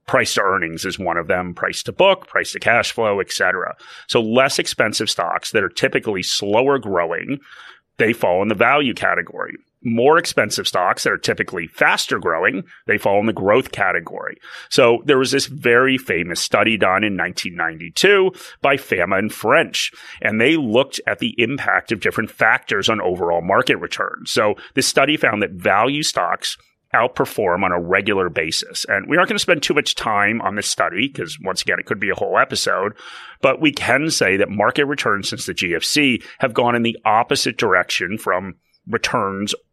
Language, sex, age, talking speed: English, male, 30-49, 175 wpm